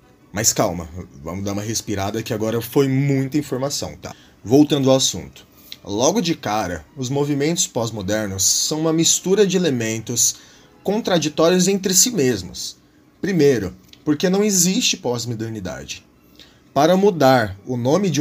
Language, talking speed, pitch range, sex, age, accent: Portuguese, 130 wpm, 105-160 Hz, male, 20-39, Brazilian